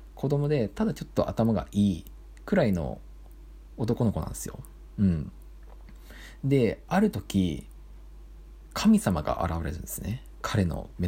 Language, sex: Japanese, male